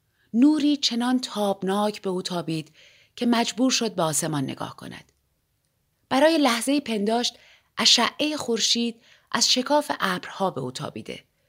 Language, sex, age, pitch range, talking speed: Persian, female, 30-49, 175-235 Hz, 125 wpm